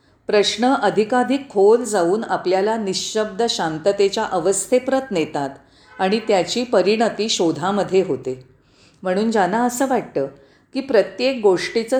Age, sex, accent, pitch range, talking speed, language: 40-59, female, native, 170-245 Hz, 105 wpm, Marathi